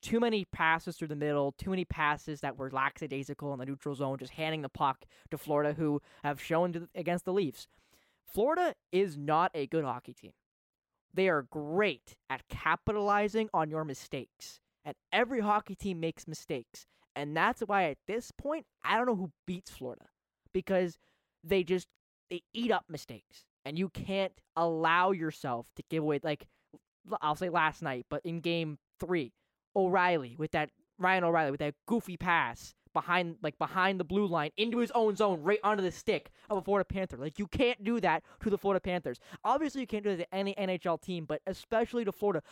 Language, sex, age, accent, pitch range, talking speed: English, male, 10-29, American, 155-205 Hz, 190 wpm